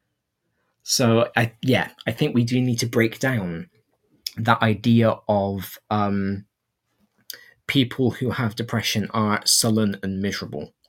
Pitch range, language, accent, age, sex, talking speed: 110-130 Hz, English, British, 20-39, male, 120 wpm